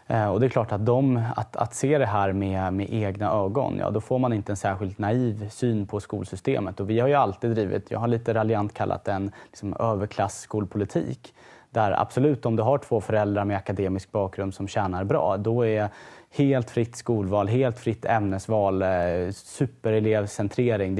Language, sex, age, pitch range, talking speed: Swedish, male, 20-39, 100-115 Hz, 185 wpm